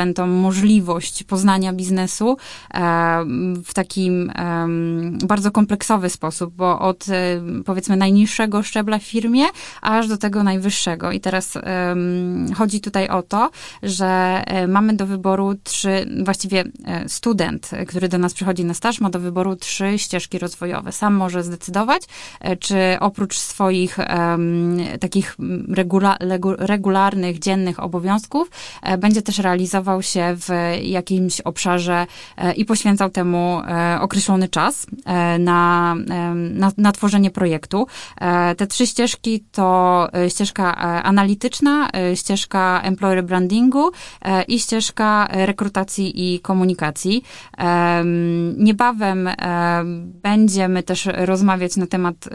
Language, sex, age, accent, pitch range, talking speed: Polish, female, 20-39, native, 175-200 Hz, 105 wpm